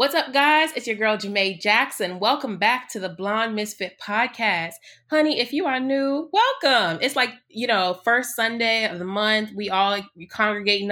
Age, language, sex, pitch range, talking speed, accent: 20-39, English, female, 195-255 Hz, 180 wpm, American